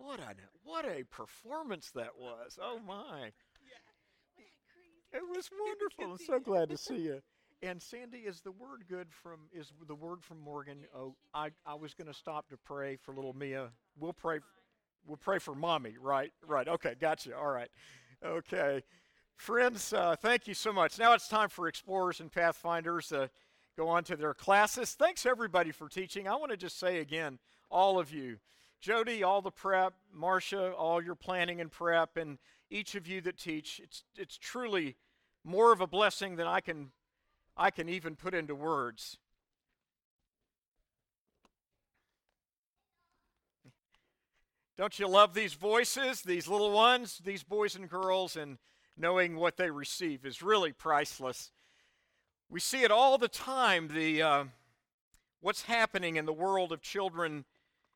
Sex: male